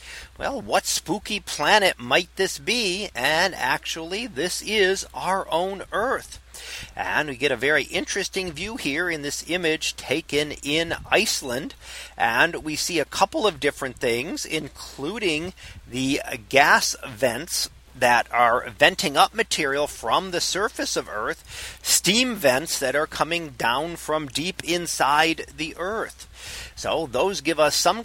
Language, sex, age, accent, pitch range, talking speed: English, male, 40-59, American, 145-195 Hz, 140 wpm